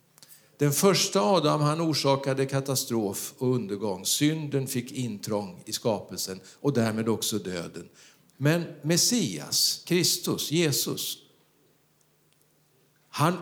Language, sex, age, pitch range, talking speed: Swedish, male, 50-69, 120-160 Hz, 100 wpm